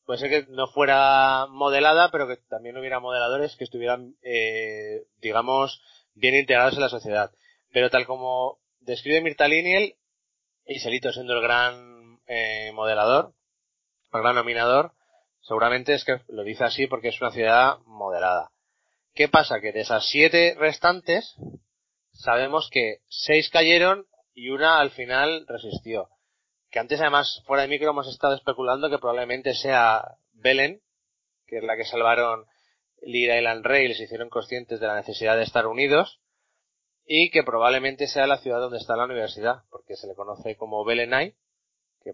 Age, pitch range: 30-49, 115-145 Hz